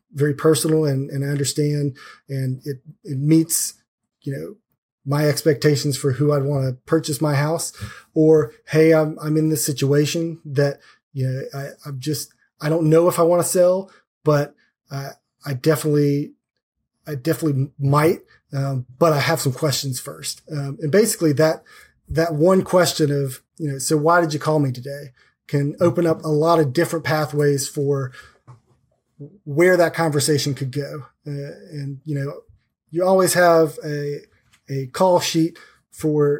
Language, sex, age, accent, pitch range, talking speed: English, male, 30-49, American, 140-160 Hz, 165 wpm